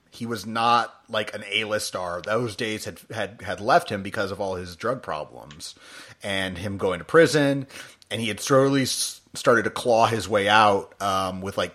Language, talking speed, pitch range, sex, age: English, 195 wpm, 100-125 Hz, male, 30-49